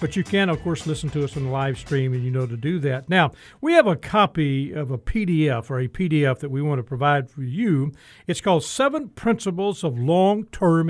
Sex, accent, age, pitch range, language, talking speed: male, American, 50-69, 150-220 Hz, English, 230 wpm